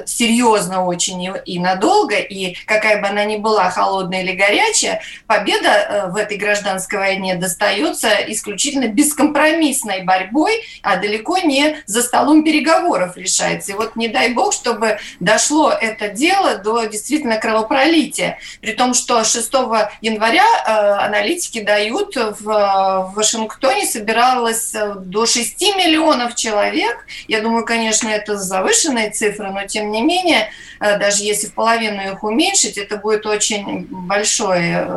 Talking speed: 130 wpm